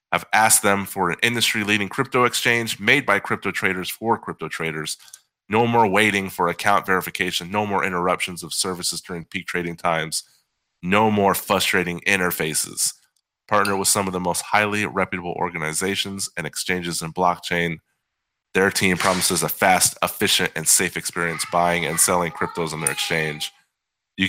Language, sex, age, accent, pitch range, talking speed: English, male, 30-49, American, 85-105 Hz, 160 wpm